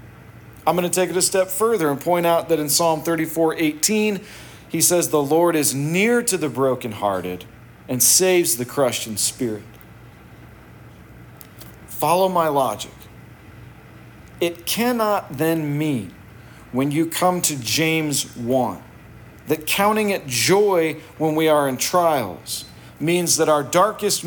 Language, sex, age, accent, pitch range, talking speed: English, male, 40-59, American, 130-190 Hz, 140 wpm